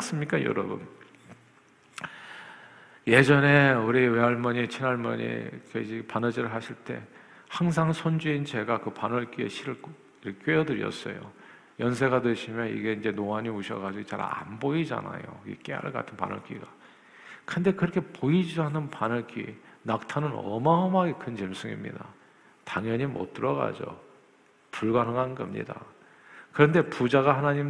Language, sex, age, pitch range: Korean, male, 50-69, 110-140 Hz